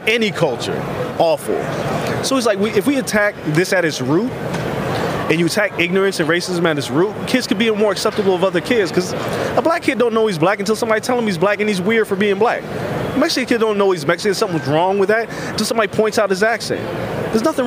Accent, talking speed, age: American, 235 wpm, 20-39